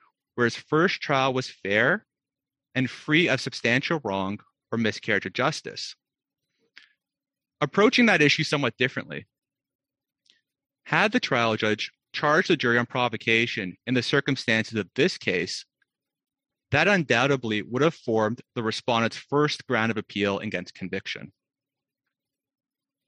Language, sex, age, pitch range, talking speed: English, male, 30-49, 115-145 Hz, 125 wpm